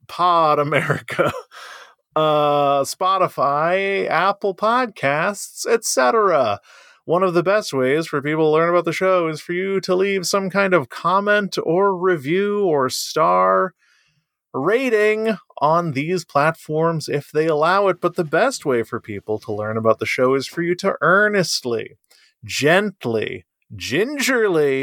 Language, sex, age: English, male, 30-49